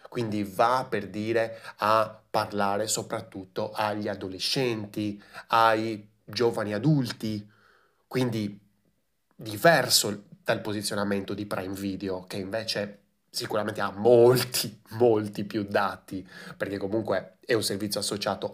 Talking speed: 105 wpm